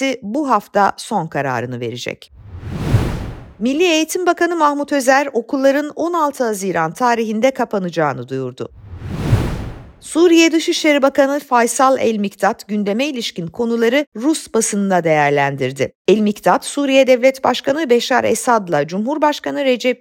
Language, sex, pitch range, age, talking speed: Turkish, female, 195-275 Hz, 50-69, 110 wpm